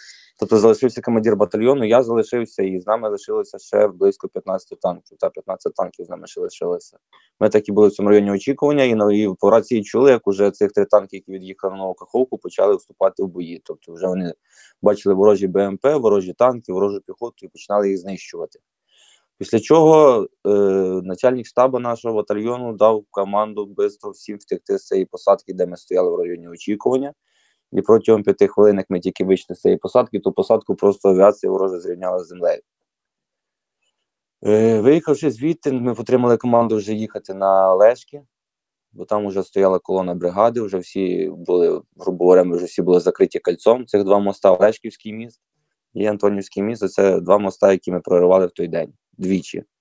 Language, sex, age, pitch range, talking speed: Ukrainian, male, 20-39, 95-130 Hz, 175 wpm